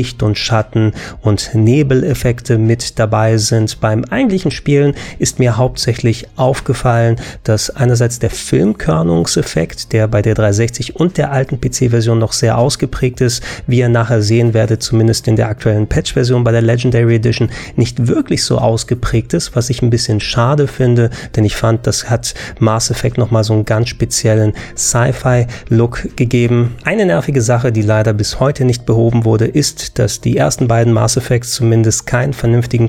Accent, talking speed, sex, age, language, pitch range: German, 160 wpm, male, 30-49, German, 110-125 Hz